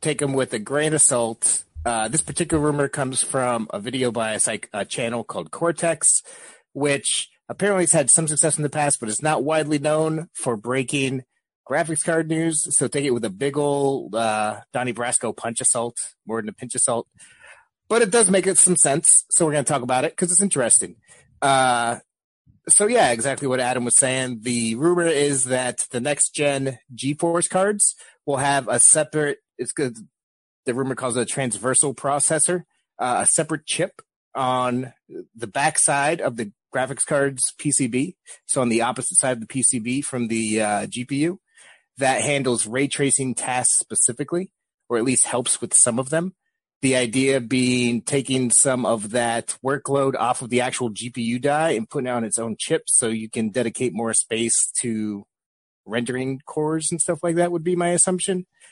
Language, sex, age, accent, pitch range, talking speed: English, male, 30-49, American, 120-155 Hz, 185 wpm